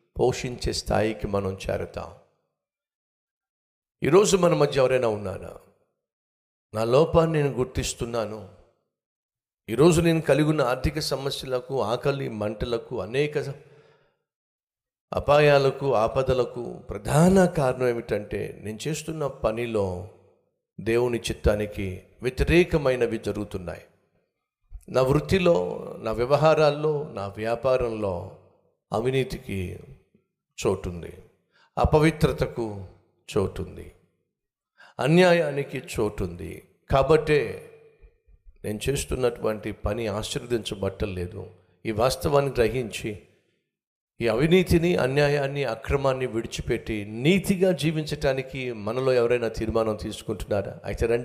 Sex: male